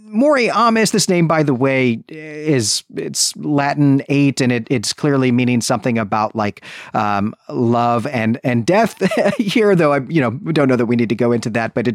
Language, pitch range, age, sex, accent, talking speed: English, 115-170 Hz, 40-59, male, American, 195 wpm